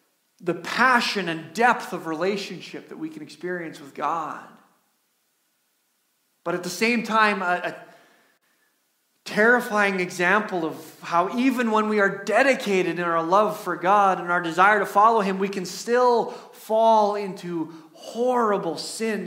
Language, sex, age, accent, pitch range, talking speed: English, male, 30-49, American, 190-230 Hz, 145 wpm